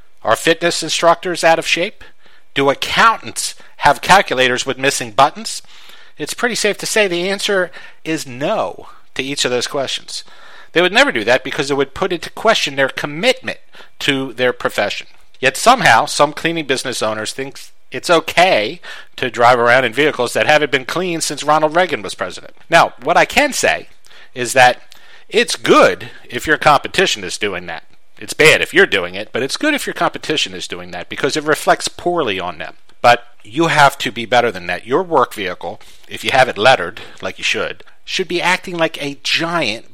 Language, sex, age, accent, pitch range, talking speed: English, male, 50-69, American, 130-175 Hz, 190 wpm